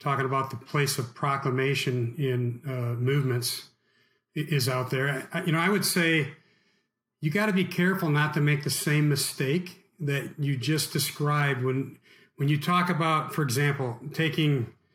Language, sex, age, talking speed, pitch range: English, male, 40-59, 160 wpm, 135-175 Hz